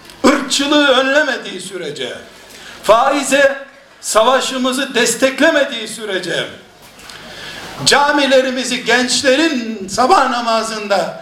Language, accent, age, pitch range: Turkish, native, 60-79, 225-280 Hz